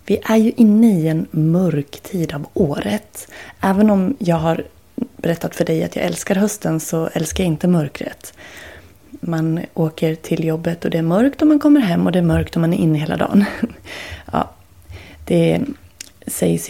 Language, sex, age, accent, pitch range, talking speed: Swedish, female, 30-49, native, 160-210 Hz, 185 wpm